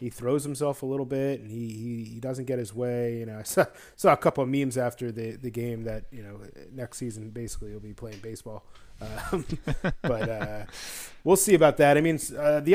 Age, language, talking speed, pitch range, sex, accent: 30-49, English, 225 wpm, 110-135 Hz, male, American